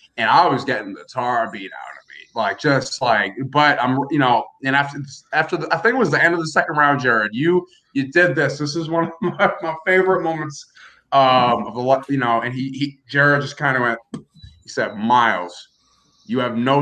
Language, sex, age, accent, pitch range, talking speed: English, male, 20-39, American, 120-150 Hz, 230 wpm